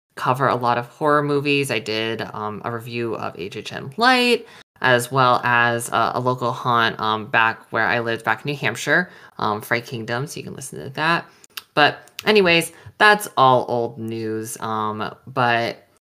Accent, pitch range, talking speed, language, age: American, 115-145 Hz, 175 wpm, English, 20-39